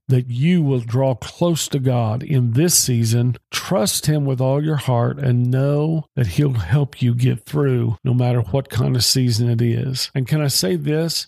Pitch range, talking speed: 120-140 Hz, 195 wpm